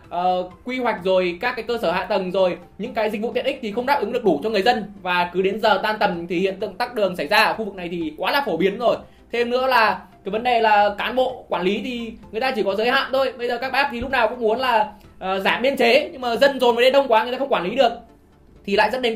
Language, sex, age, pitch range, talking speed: Vietnamese, male, 20-39, 205-255 Hz, 315 wpm